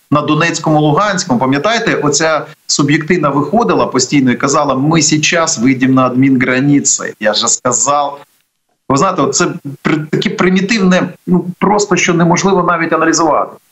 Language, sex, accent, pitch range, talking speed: Ukrainian, male, native, 145-200 Hz, 130 wpm